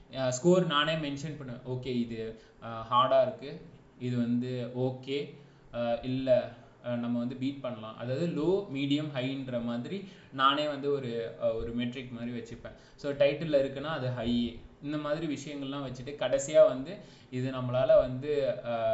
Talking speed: 80 wpm